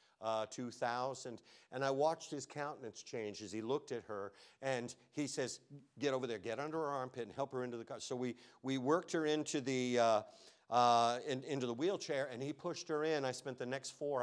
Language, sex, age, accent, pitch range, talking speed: English, male, 50-69, American, 105-135 Hz, 220 wpm